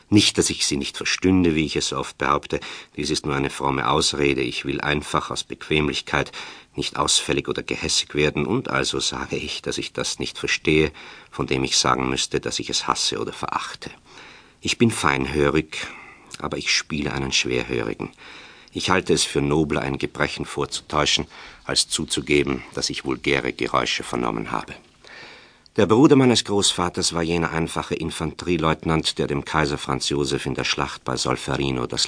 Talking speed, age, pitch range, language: 170 wpm, 50-69, 65-80 Hz, German